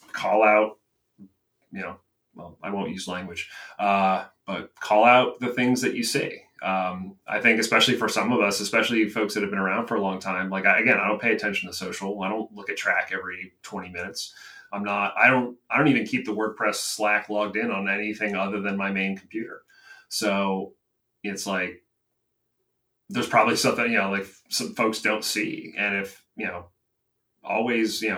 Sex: male